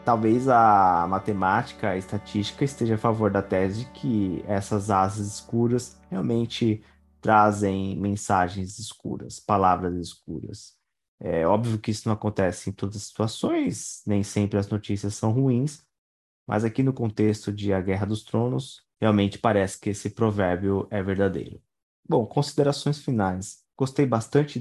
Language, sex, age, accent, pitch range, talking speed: Portuguese, male, 20-39, Brazilian, 100-115 Hz, 140 wpm